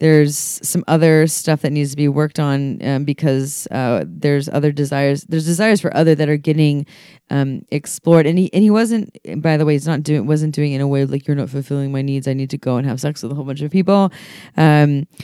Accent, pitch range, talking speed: American, 140-170 Hz, 245 wpm